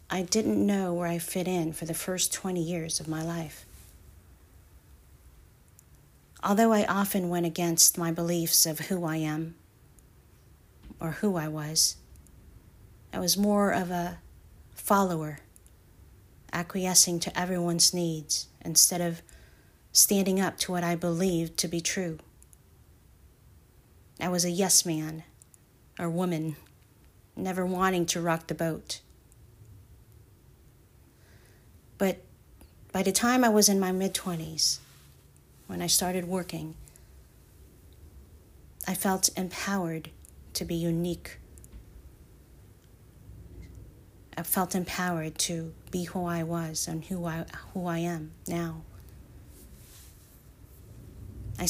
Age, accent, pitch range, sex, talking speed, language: 40-59, American, 110-180 Hz, female, 115 wpm, English